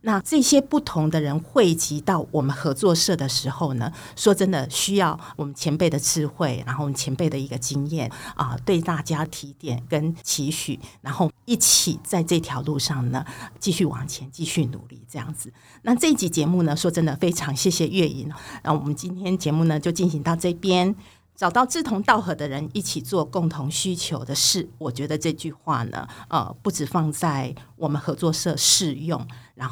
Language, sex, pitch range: Chinese, female, 145-185 Hz